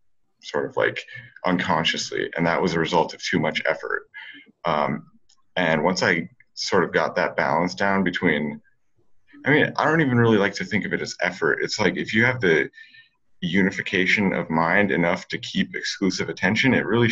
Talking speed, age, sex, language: 185 wpm, 30-49, male, English